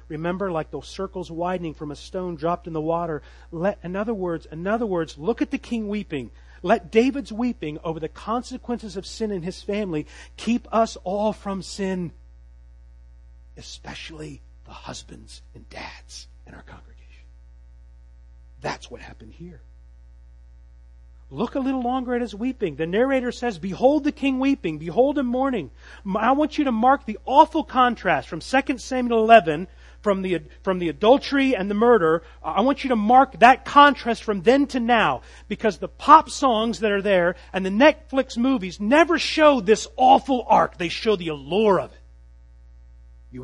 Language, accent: English, American